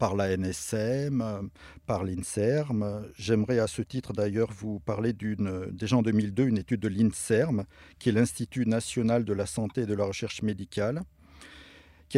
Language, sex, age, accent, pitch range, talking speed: French, male, 50-69, French, 110-135 Hz, 165 wpm